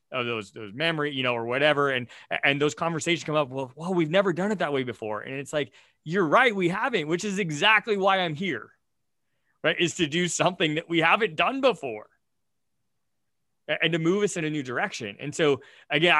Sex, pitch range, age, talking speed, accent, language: male, 125-165 Hz, 20-39, 210 wpm, American, English